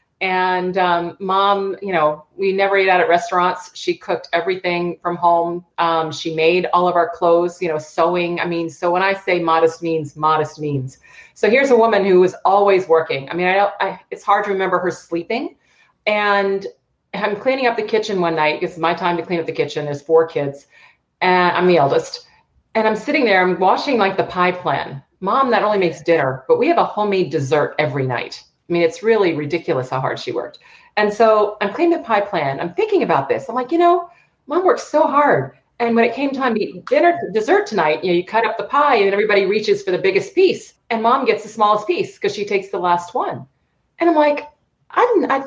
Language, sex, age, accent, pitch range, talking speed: English, female, 30-49, American, 170-240 Hz, 225 wpm